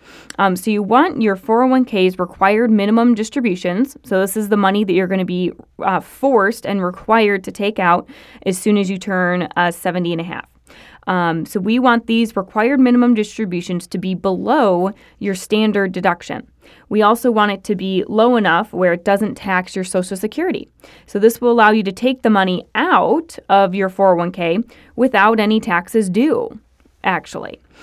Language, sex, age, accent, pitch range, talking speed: English, female, 20-39, American, 180-220 Hz, 180 wpm